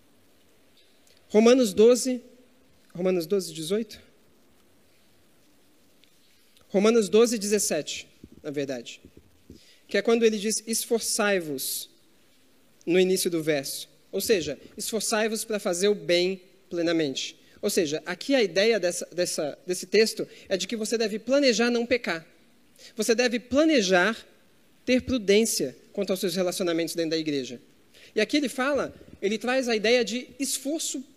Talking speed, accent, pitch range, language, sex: 130 wpm, Brazilian, 175-240 Hz, Portuguese, male